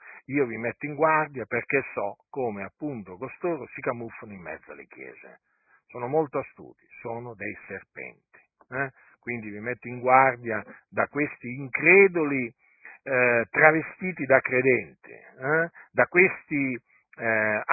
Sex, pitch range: male, 115-150 Hz